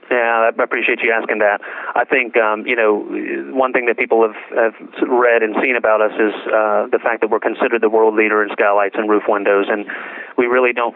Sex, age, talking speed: male, 30-49, 225 wpm